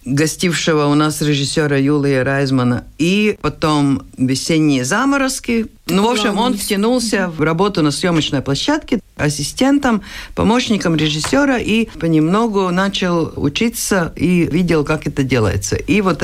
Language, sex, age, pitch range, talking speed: Russian, female, 50-69, 140-200 Hz, 125 wpm